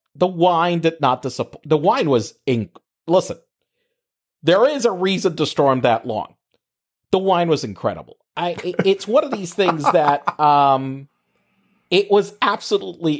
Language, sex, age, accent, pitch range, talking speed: English, male, 40-59, American, 145-210 Hz, 155 wpm